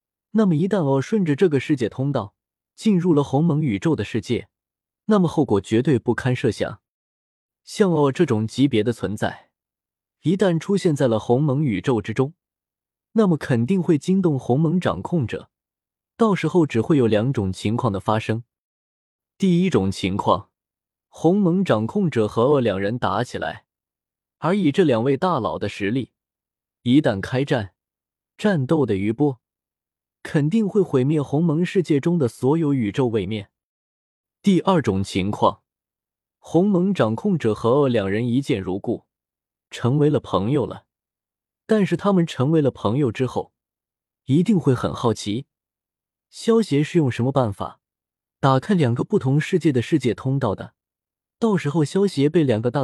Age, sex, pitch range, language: 20-39, male, 110-165 Hz, Chinese